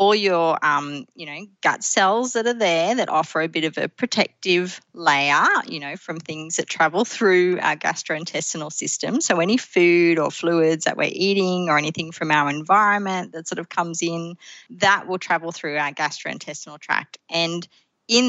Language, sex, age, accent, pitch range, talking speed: English, female, 30-49, Australian, 155-200 Hz, 180 wpm